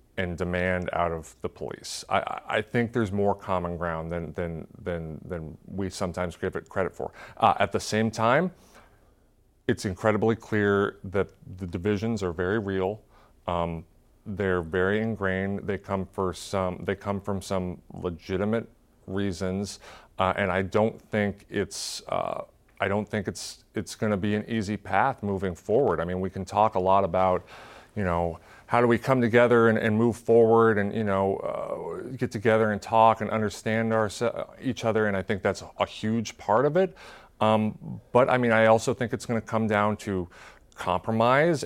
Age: 30-49